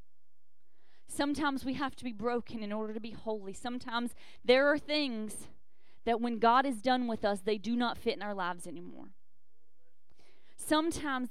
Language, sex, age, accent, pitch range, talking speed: English, female, 20-39, American, 175-250 Hz, 165 wpm